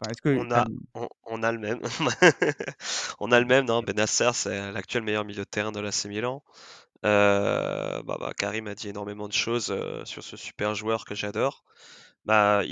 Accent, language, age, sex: French, French, 20-39, male